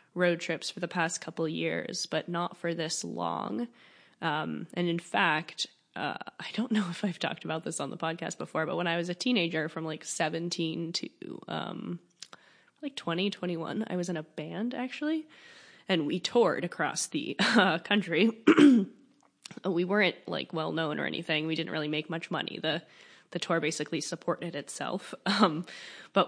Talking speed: 180 wpm